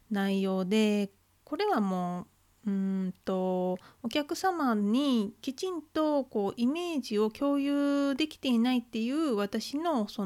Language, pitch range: Japanese, 200-265 Hz